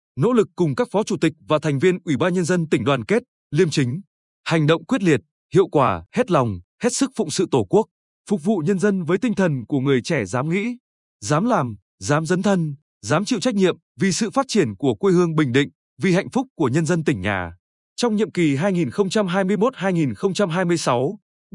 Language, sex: Vietnamese, male